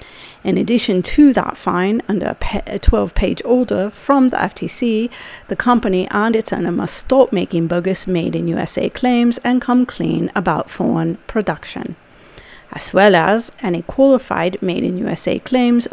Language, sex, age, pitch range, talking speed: English, female, 40-59, 185-235 Hz, 135 wpm